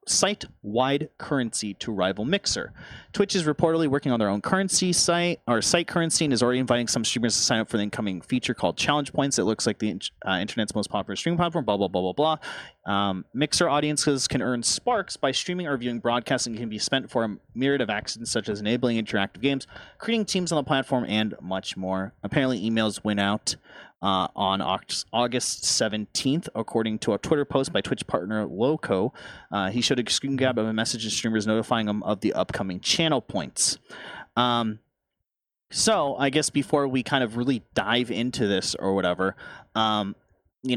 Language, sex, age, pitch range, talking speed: English, male, 30-49, 110-145 Hz, 195 wpm